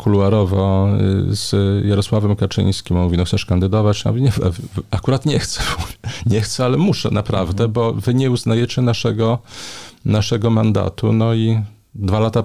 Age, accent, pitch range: 40-59, native, 100-120 Hz